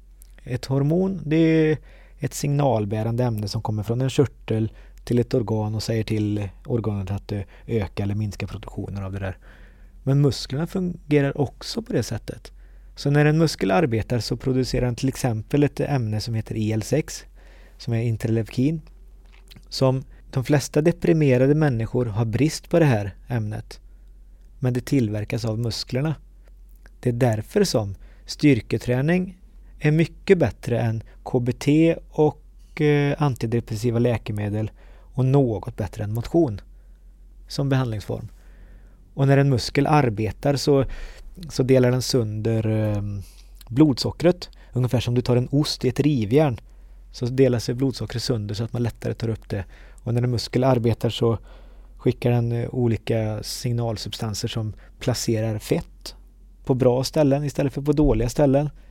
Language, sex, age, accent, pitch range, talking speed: English, male, 30-49, Swedish, 110-140 Hz, 145 wpm